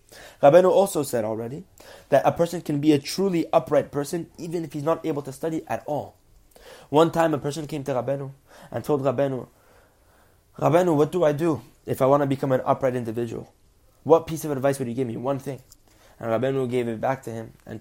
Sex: male